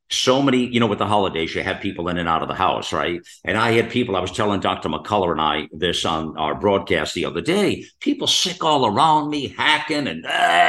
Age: 50-69